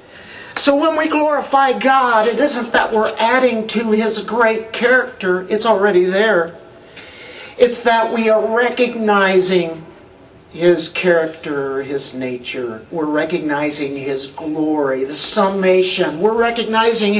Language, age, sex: English, 50-69, male